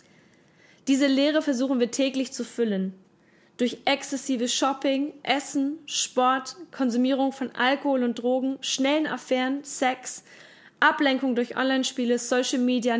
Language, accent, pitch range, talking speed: German, German, 230-275 Hz, 115 wpm